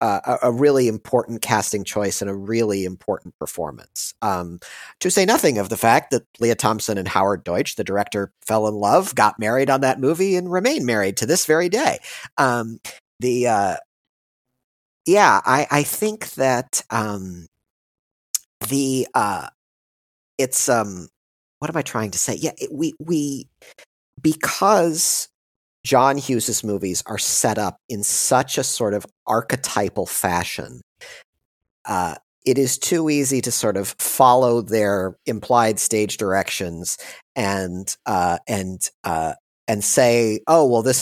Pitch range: 100-135 Hz